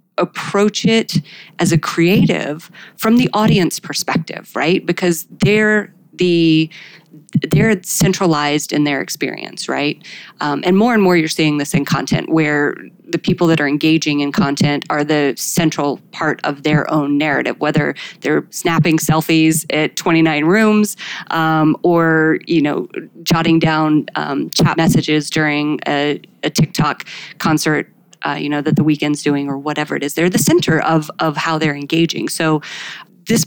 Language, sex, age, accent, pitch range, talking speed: English, female, 30-49, American, 150-175 Hz, 155 wpm